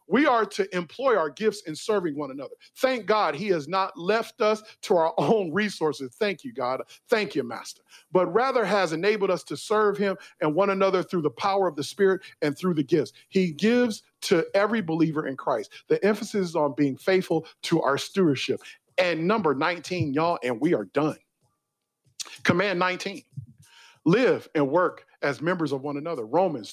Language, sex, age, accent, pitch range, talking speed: English, male, 40-59, American, 155-215 Hz, 185 wpm